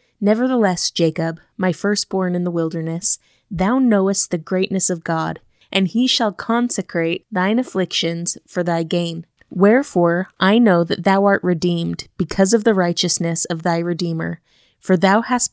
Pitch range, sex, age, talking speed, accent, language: 170-205 Hz, female, 20-39, 150 wpm, American, English